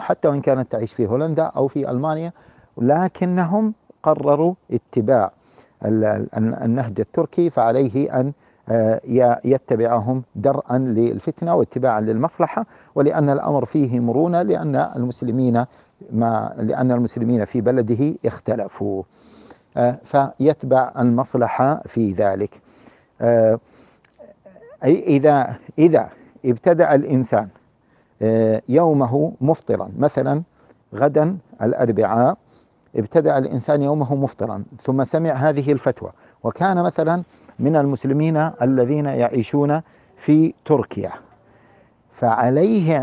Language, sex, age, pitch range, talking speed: English, male, 50-69, 120-150 Hz, 90 wpm